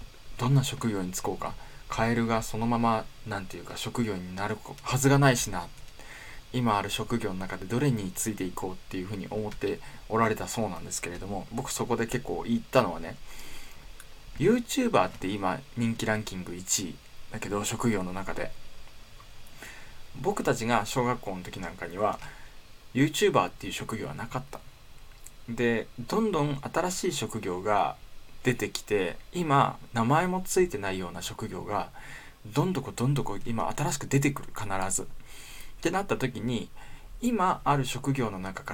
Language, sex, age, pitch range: Japanese, male, 20-39, 95-130 Hz